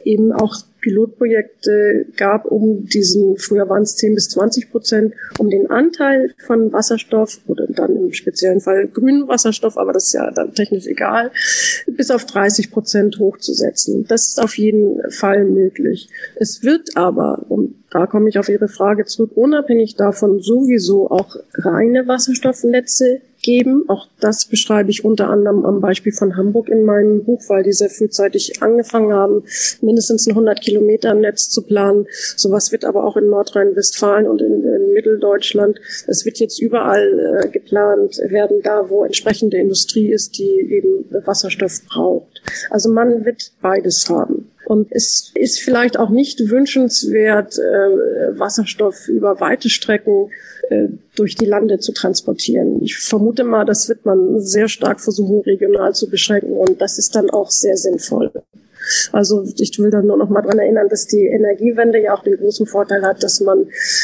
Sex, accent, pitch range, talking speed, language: female, German, 200-240 Hz, 160 wpm, German